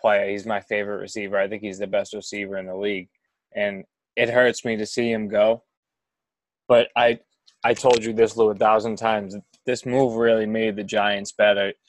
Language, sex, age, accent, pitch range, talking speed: English, male, 20-39, American, 105-120 Hz, 195 wpm